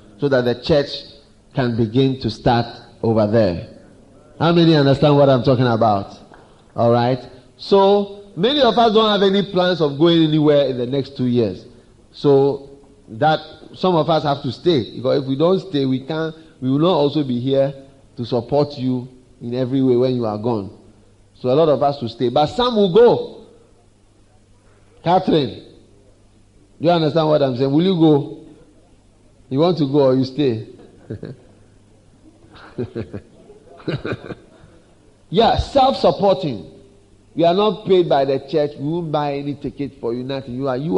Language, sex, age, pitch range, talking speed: English, male, 30-49, 115-150 Hz, 165 wpm